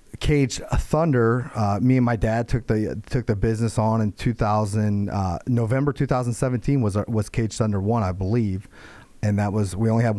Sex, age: male, 30-49